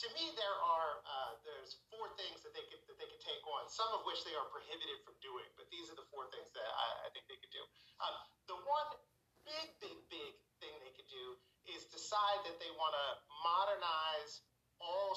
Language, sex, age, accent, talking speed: English, male, 40-59, American, 220 wpm